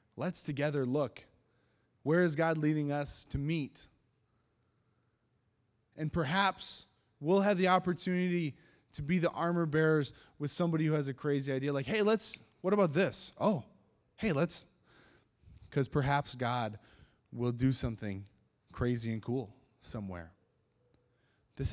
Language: English